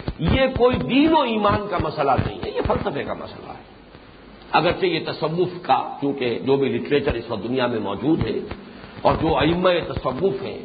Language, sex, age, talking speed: English, male, 50-69, 185 wpm